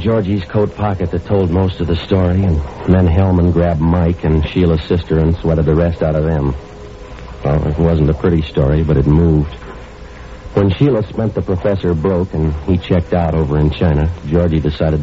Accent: American